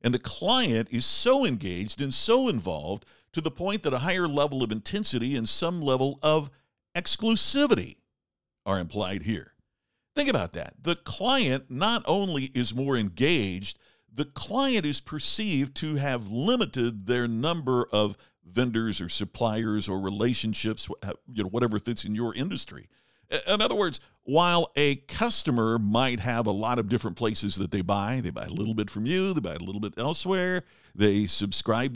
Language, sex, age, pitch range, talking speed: English, male, 50-69, 105-155 Hz, 165 wpm